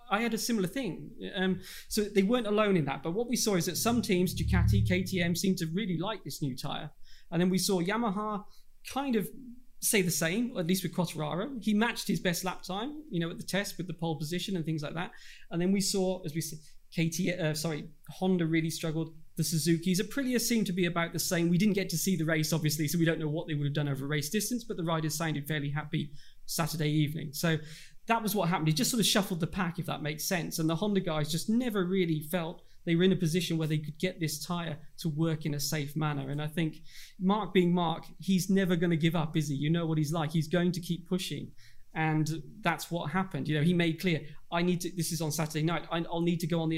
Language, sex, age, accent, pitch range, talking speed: English, male, 20-39, British, 155-190 Hz, 255 wpm